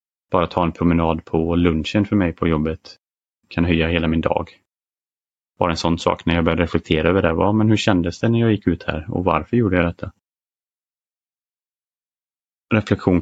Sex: male